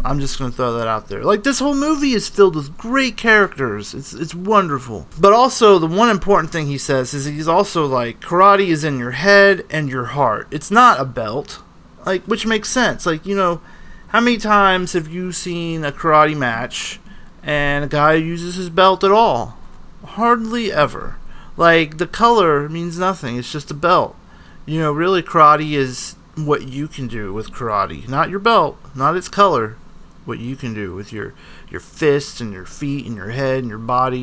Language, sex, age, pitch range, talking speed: English, male, 30-49, 135-195 Hz, 195 wpm